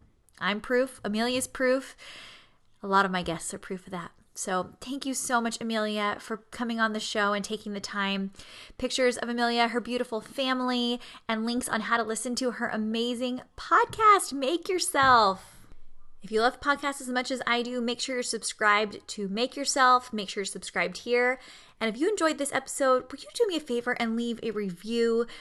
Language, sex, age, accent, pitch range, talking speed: English, female, 20-39, American, 205-255 Hz, 195 wpm